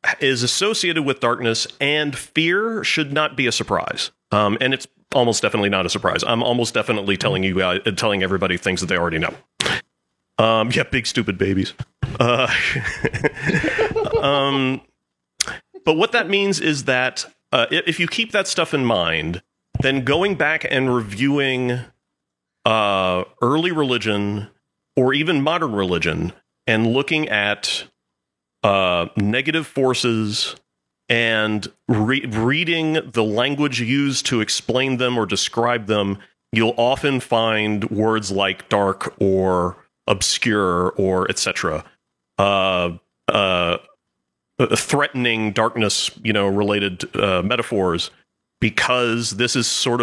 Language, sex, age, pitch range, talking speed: English, male, 40-59, 100-135 Hz, 125 wpm